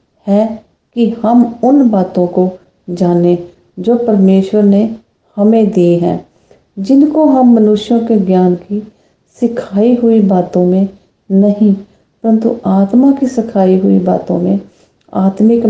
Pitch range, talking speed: 190-230 Hz, 120 wpm